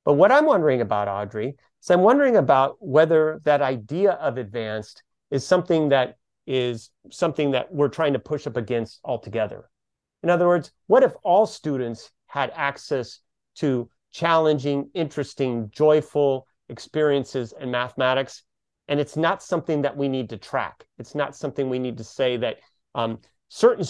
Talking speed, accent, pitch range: 160 wpm, American, 120-160 Hz